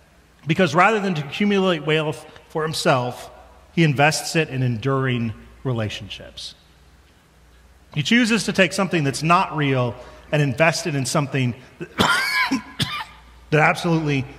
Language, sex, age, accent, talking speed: English, male, 40-59, American, 125 wpm